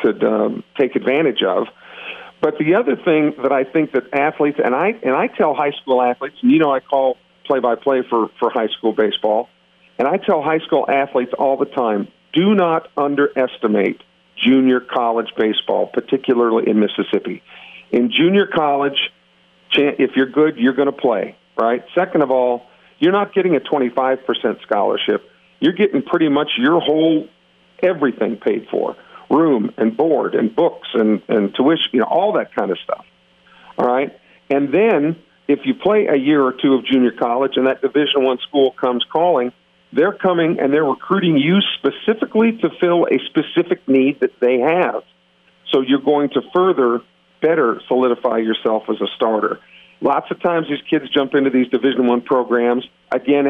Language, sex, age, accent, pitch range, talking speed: English, male, 50-69, American, 125-160 Hz, 175 wpm